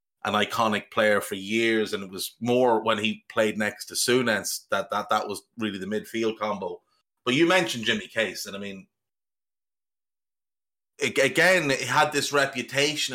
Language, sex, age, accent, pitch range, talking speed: English, male, 30-49, Irish, 110-135 Hz, 165 wpm